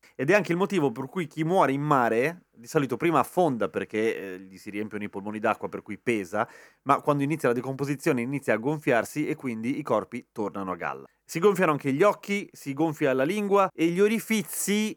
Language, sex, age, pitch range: Italian, male, 30-49, 120-165 Hz